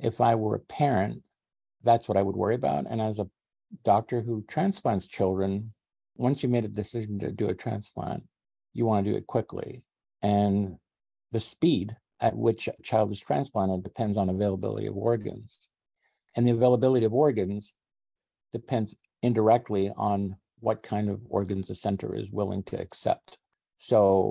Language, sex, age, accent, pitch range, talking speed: English, male, 50-69, American, 100-115 Hz, 160 wpm